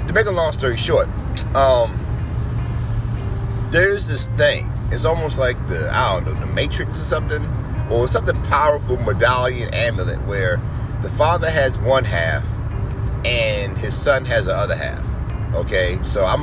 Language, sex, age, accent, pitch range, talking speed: English, male, 30-49, American, 110-120 Hz, 155 wpm